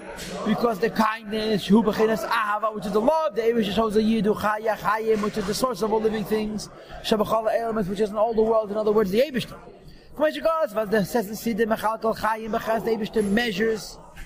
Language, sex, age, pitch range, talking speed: English, male, 30-49, 205-250 Hz, 135 wpm